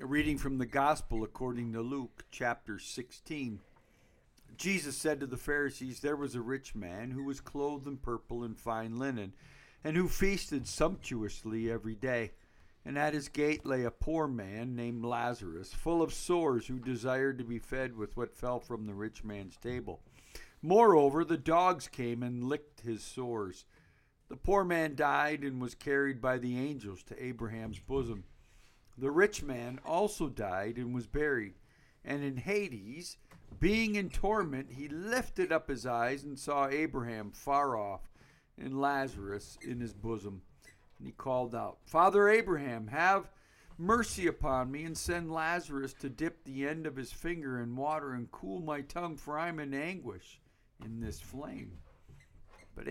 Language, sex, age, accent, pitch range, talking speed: English, male, 50-69, American, 115-150 Hz, 165 wpm